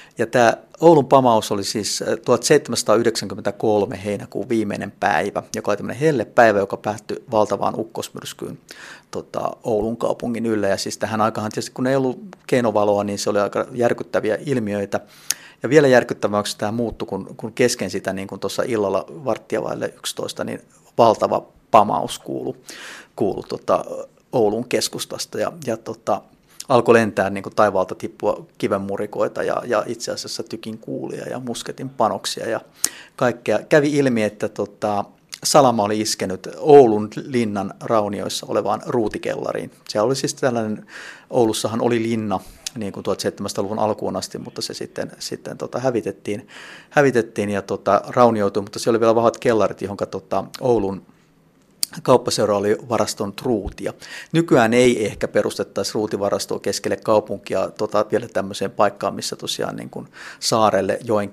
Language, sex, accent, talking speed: Finnish, male, native, 140 wpm